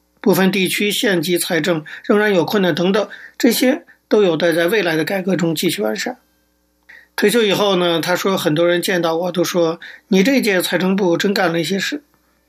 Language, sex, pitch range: Chinese, male, 170-210 Hz